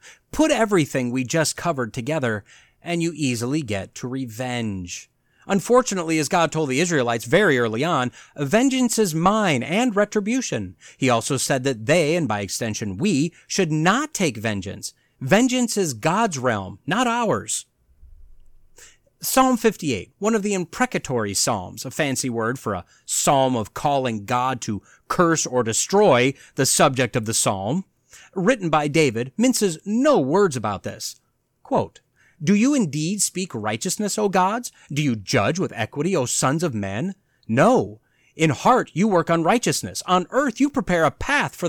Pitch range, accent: 125-205 Hz, American